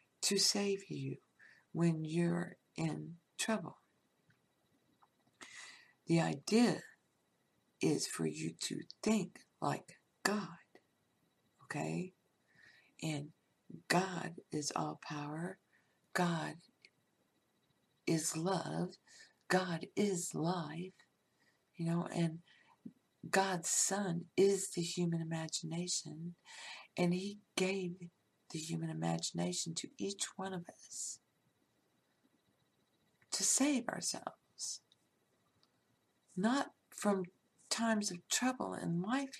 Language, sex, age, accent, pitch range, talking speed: English, female, 60-79, American, 160-200 Hz, 90 wpm